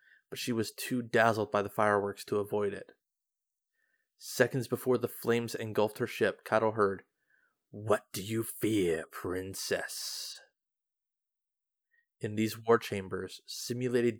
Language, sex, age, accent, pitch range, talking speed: English, male, 20-39, American, 100-120 Hz, 125 wpm